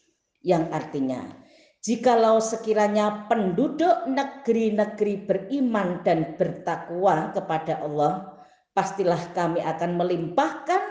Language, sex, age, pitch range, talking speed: Indonesian, female, 40-59, 155-225 Hz, 80 wpm